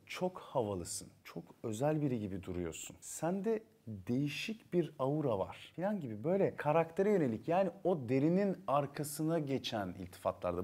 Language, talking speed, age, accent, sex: Turkish, 130 wpm, 40-59, native, male